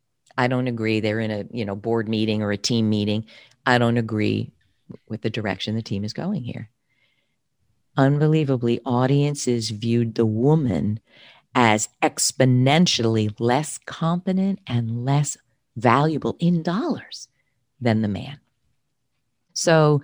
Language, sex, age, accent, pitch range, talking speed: English, female, 50-69, American, 120-165 Hz, 130 wpm